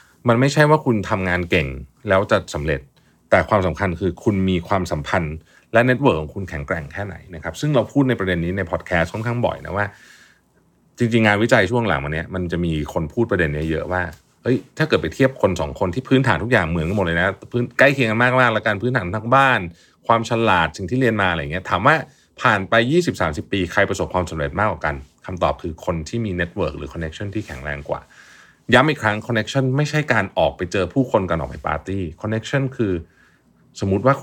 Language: Thai